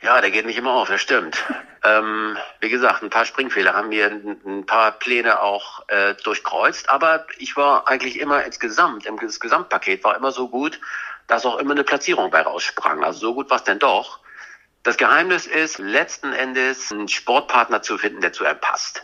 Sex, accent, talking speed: male, German, 195 wpm